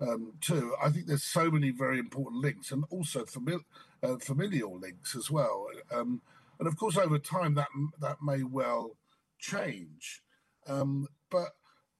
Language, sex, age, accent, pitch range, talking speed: English, male, 50-69, British, 135-170 Hz, 160 wpm